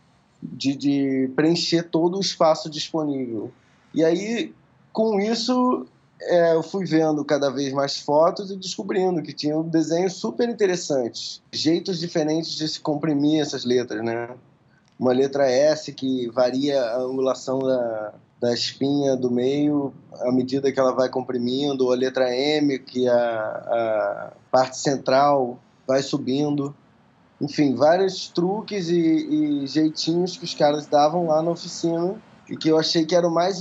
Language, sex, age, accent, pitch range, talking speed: Portuguese, male, 20-39, Brazilian, 130-165 Hz, 150 wpm